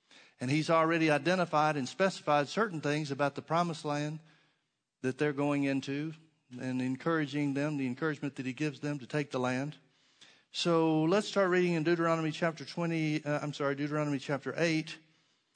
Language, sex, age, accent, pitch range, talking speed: English, male, 50-69, American, 145-175 Hz, 165 wpm